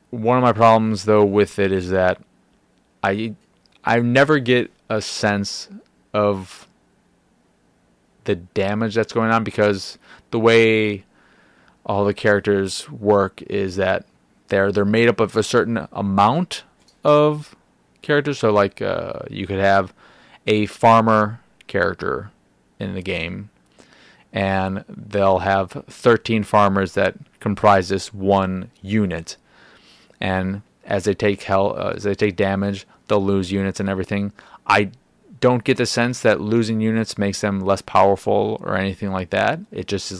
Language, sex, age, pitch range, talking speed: English, male, 20-39, 95-105 Hz, 145 wpm